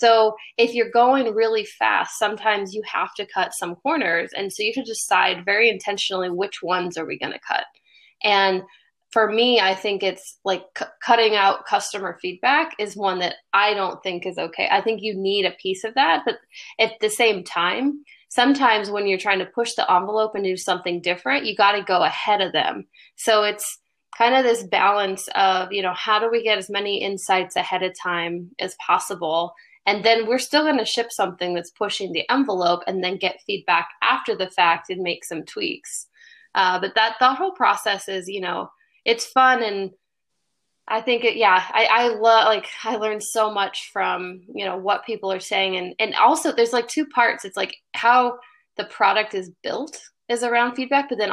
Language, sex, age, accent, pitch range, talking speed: English, female, 20-39, American, 190-235 Hz, 200 wpm